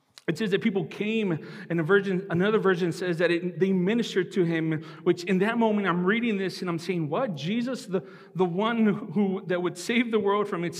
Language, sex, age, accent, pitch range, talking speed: English, male, 40-59, American, 160-205 Hz, 220 wpm